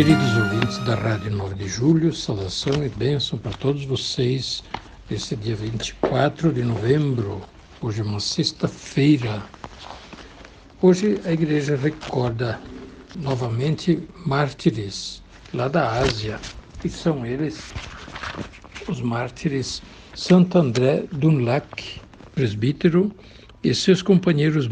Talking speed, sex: 105 wpm, male